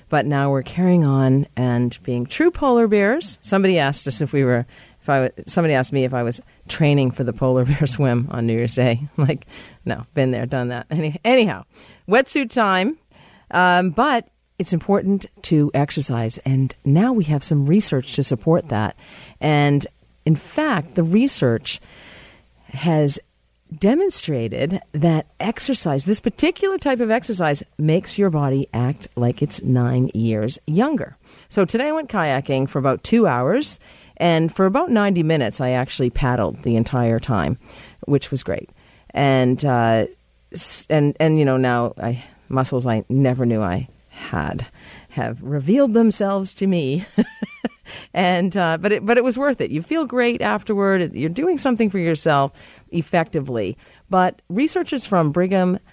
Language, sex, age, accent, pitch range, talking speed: English, female, 50-69, American, 130-195 Hz, 160 wpm